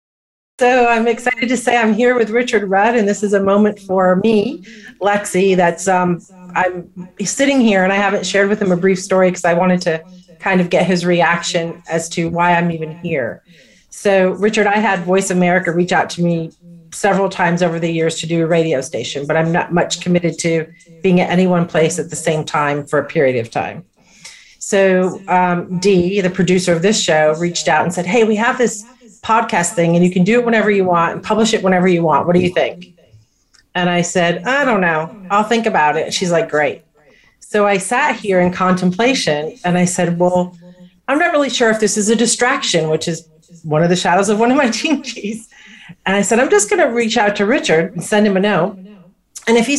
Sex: female